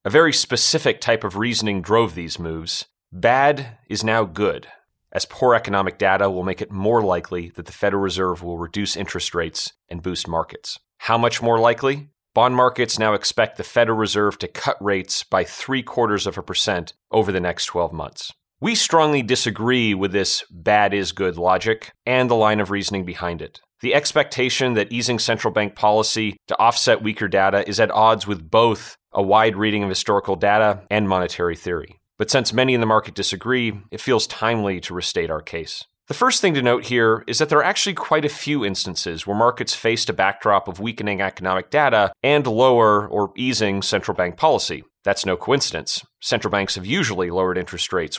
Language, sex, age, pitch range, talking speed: English, male, 30-49, 95-120 Hz, 190 wpm